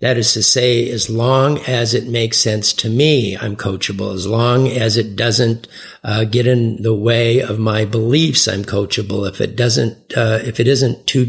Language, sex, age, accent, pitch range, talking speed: English, male, 50-69, American, 110-130 Hz, 195 wpm